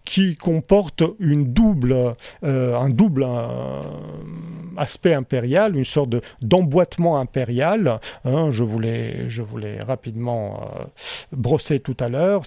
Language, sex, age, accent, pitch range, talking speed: French, male, 50-69, French, 125-160 Hz, 125 wpm